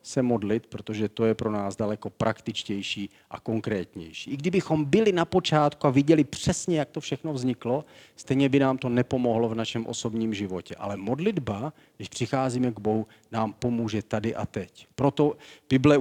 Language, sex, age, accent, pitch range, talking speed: Czech, male, 40-59, native, 110-135 Hz, 170 wpm